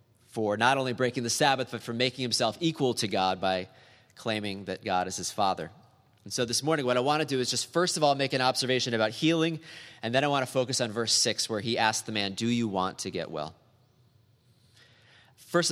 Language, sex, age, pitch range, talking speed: English, male, 30-49, 110-135 Hz, 230 wpm